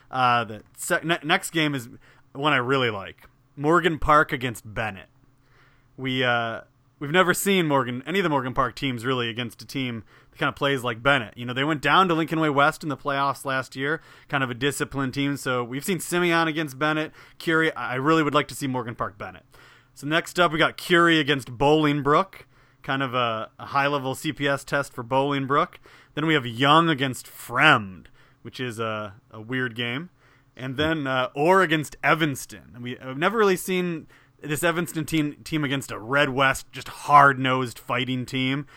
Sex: male